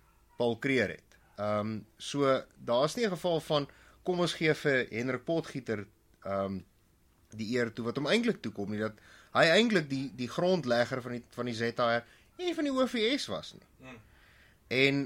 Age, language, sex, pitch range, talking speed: 30-49, English, male, 105-140 Hz, 165 wpm